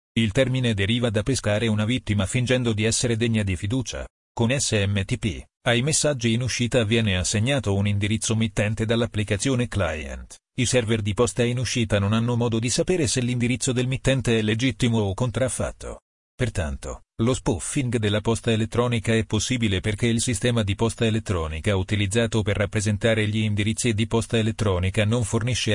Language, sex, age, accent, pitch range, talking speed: Italian, male, 40-59, native, 105-120 Hz, 160 wpm